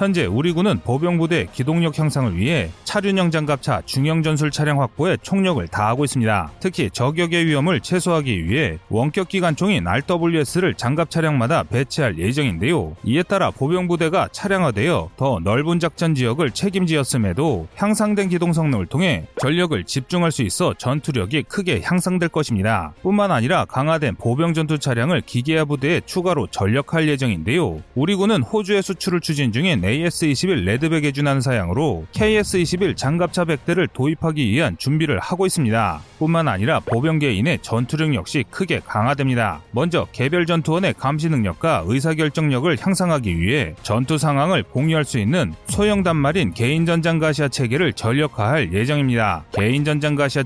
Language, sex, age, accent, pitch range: Korean, male, 30-49, native, 120-170 Hz